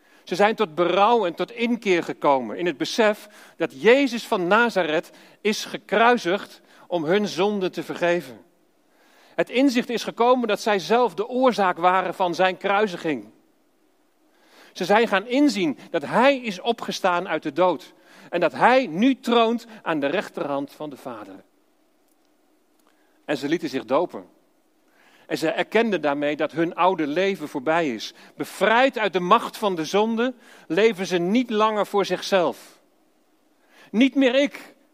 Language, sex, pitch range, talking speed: Dutch, male, 175-280 Hz, 150 wpm